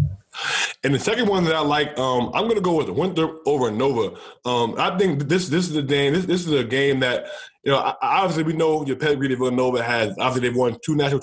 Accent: American